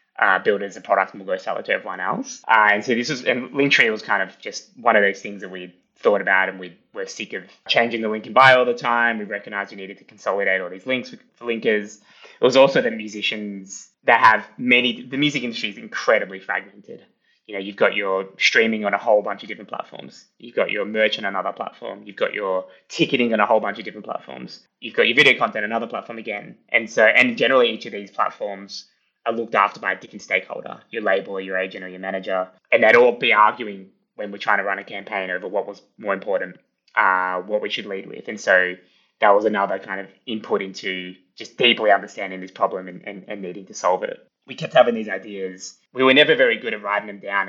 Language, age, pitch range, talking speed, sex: English, 20-39, 95-110 Hz, 240 wpm, male